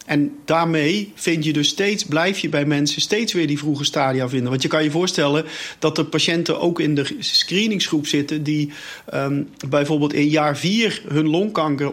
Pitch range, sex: 140-160 Hz, male